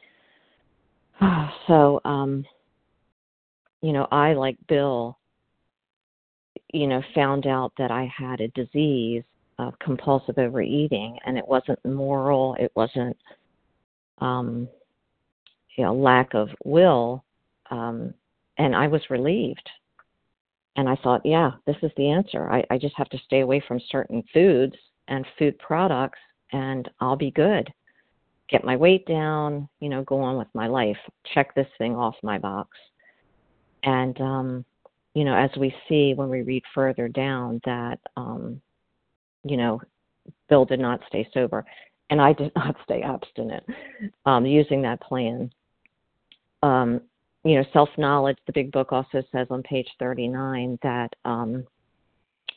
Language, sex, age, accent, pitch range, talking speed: English, female, 50-69, American, 125-145 Hz, 140 wpm